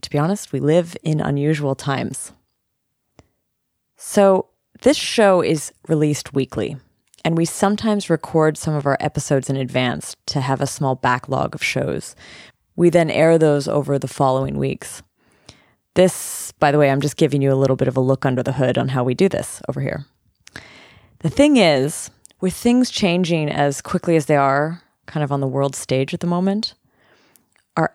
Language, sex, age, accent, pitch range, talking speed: English, female, 30-49, American, 135-170 Hz, 180 wpm